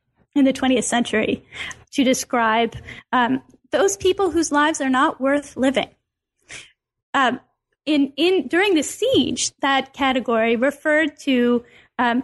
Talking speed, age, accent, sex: 125 wpm, 10-29, American, female